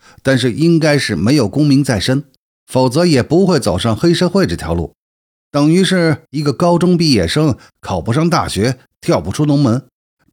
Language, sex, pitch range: Chinese, male, 115-170 Hz